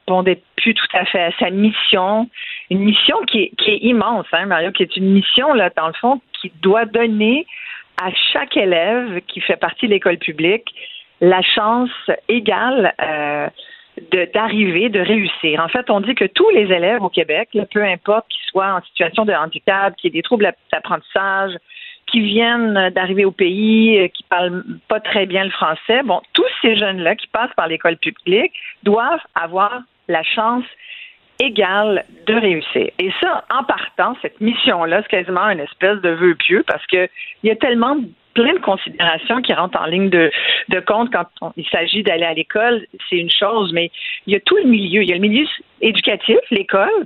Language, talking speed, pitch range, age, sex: French, 185 wpm, 180-235 Hz, 50-69, female